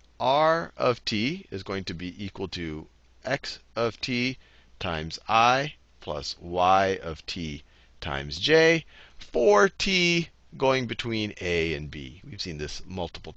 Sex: male